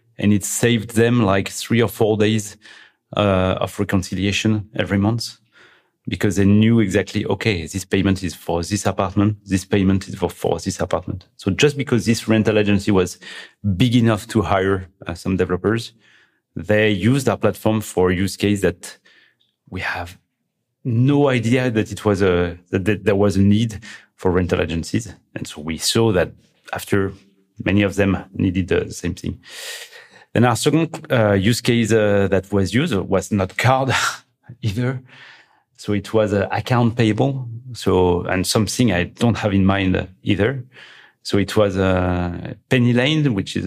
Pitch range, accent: 95-115 Hz, French